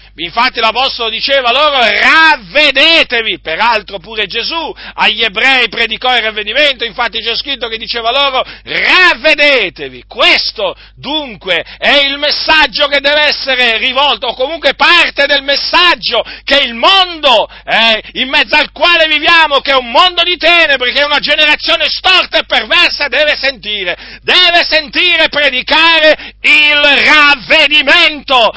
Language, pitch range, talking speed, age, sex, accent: Italian, 190-295 Hz, 130 wpm, 50-69, male, native